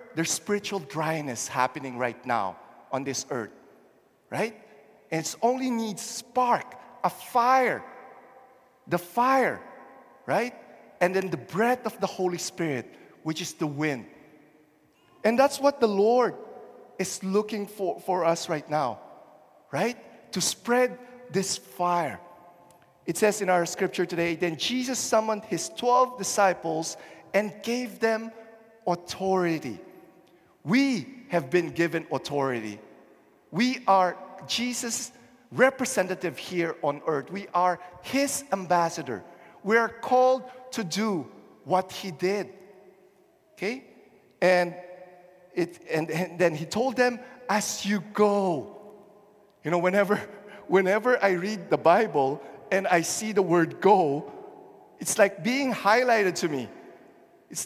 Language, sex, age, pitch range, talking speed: English, male, 50-69, 175-235 Hz, 125 wpm